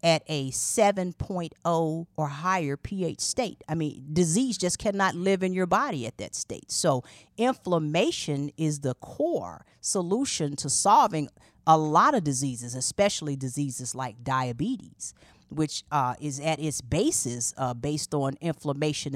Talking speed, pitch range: 140 wpm, 130-175 Hz